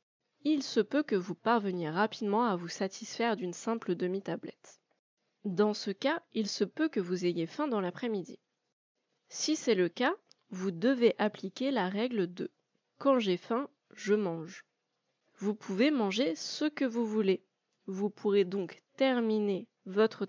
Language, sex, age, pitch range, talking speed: French, female, 20-39, 190-245 Hz, 155 wpm